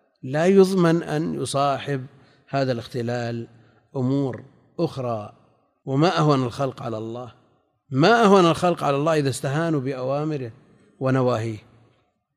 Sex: male